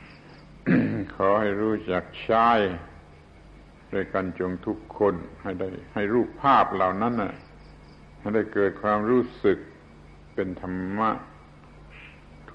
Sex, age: male, 70-89